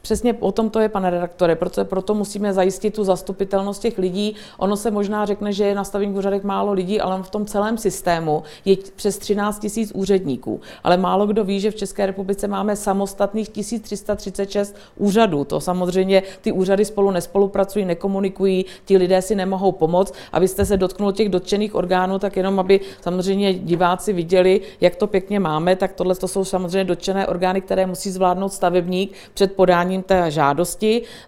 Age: 50-69